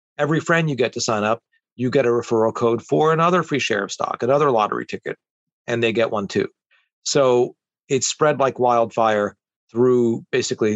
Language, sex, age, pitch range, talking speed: English, male, 40-59, 120-170 Hz, 185 wpm